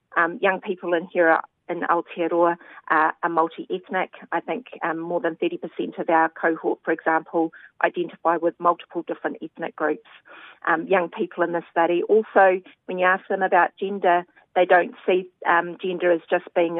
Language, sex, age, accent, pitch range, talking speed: English, female, 40-59, Australian, 165-180 Hz, 170 wpm